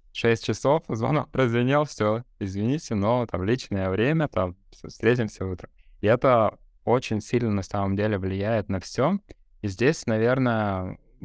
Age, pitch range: 20-39, 95-120 Hz